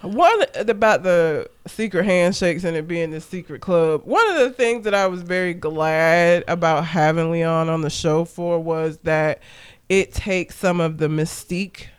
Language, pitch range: English, 165-205 Hz